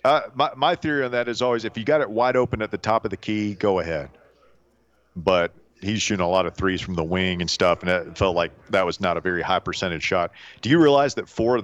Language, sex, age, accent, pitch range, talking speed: English, male, 40-59, American, 95-125 Hz, 265 wpm